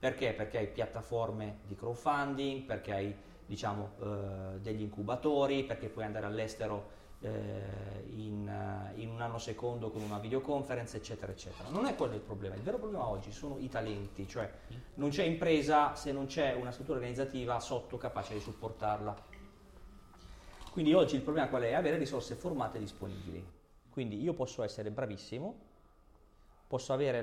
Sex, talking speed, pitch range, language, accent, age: male, 155 wpm, 105-135 Hz, Italian, native, 40-59